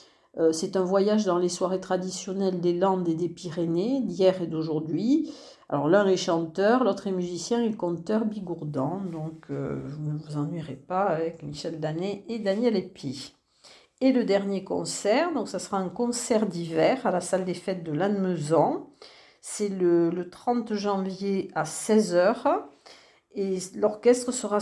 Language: French